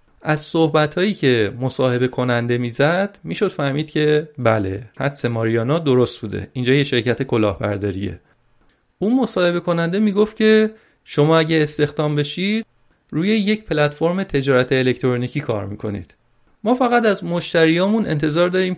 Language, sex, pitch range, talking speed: Persian, male, 125-175 Hz, 135 wpm